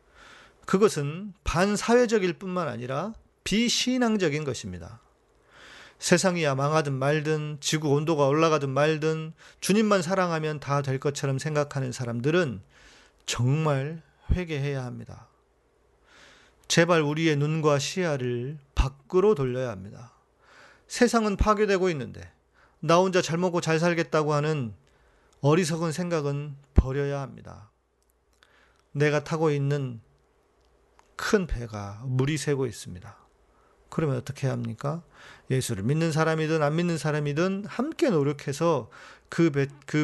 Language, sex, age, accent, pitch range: Korean, male, 40-59, native, 135-175 Hz